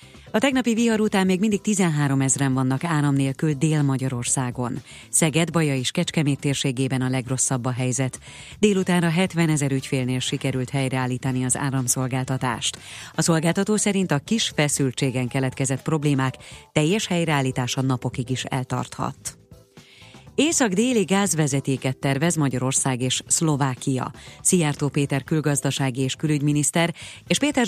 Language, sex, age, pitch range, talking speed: Hungarian, female, 30-49, 130-170 Hz, 120 wpm